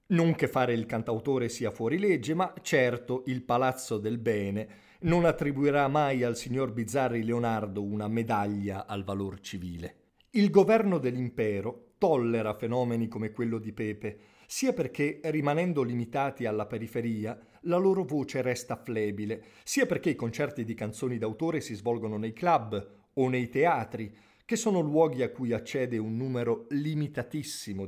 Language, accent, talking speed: Italian, native, 150 wpm